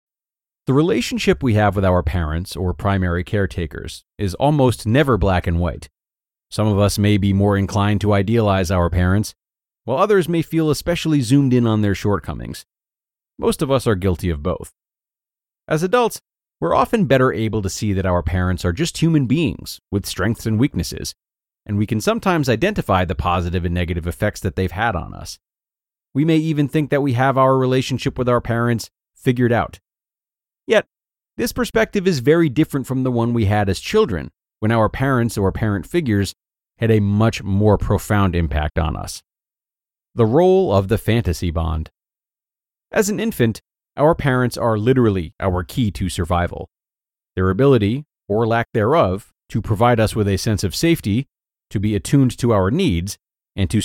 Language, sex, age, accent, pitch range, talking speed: English, male, 30-49, American, 90-130 Hz, 175 wpm